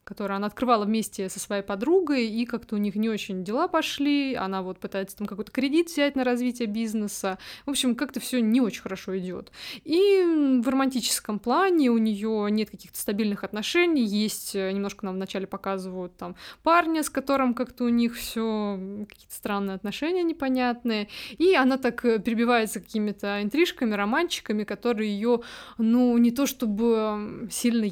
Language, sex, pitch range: Russian, female, 205-245 Hz